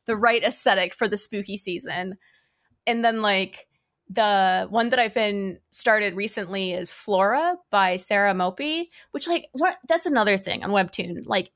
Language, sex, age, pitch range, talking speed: English, female, 20-39, 190-240 Hz, 160 wpm